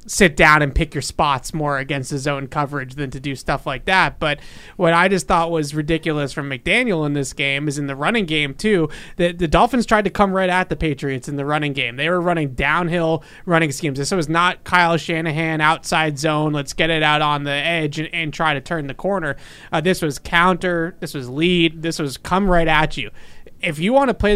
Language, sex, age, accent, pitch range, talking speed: English, male, 30-49, American, 145-175 Hz, 230 wpm